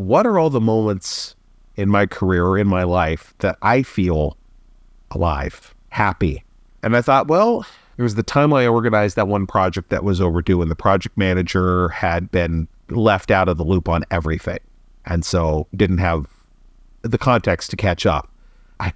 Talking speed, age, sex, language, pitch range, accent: 175 wpm, 40-59, male, English, 90-125 Hz, American